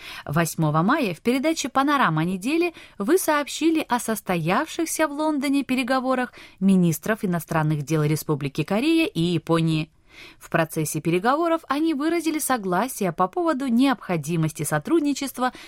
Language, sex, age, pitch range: Russian, female, 20-39, 165-260 Hz